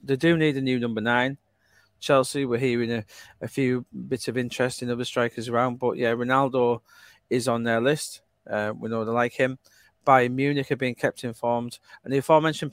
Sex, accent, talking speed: male, British, 200 wpm